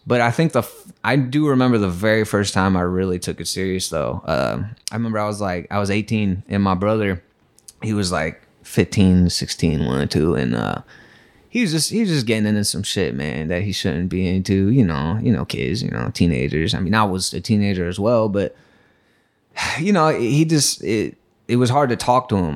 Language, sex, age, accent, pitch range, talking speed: English, male, 20-39, American, 90-115 Hz, 225 wpm